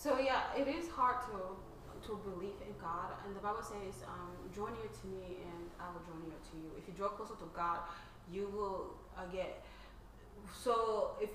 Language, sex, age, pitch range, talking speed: English, female, 20-39, 180-220 Hz, 200 wpm